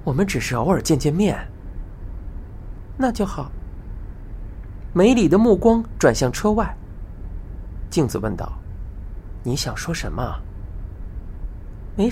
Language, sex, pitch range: Chinese, male, 90-150 Hz